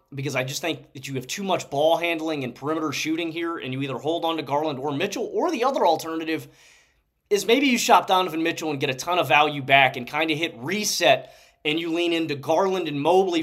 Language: English